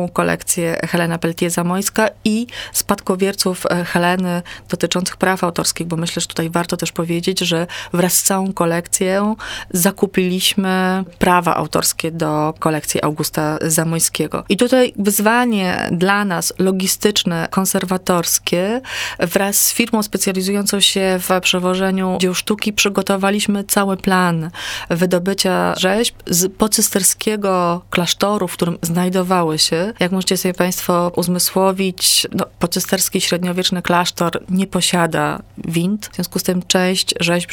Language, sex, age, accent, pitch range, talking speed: Polish, female, 30-49, native, 175-195 Hz, 120 wpm